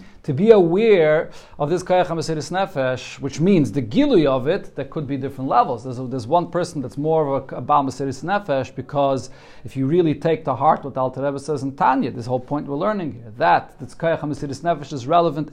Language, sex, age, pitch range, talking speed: English, male, 40-59, 150-195 Hz, 200 wpm